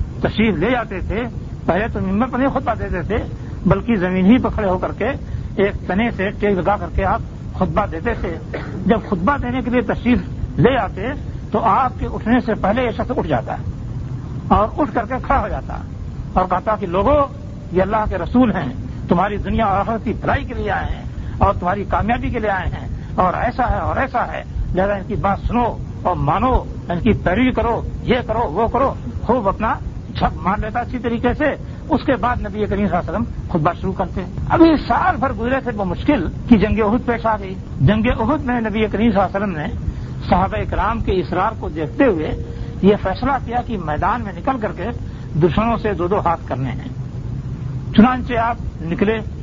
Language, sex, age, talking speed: Urdu, male, 60-79, 205 wpm